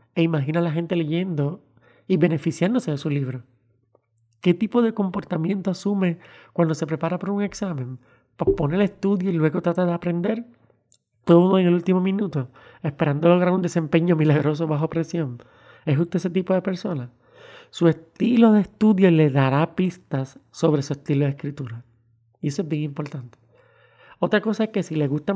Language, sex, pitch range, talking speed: Spanish, male, 145-185 Hz, 175 wpm